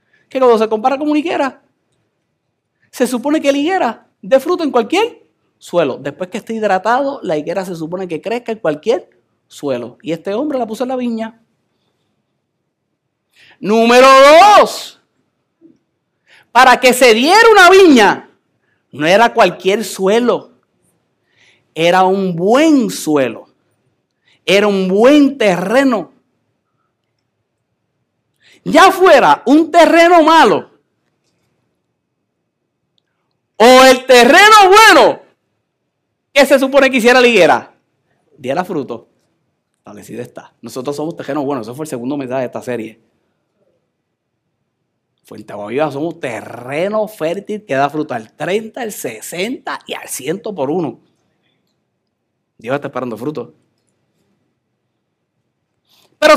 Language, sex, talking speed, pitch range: Spanish, male, 120 wpm, 180-290 Hz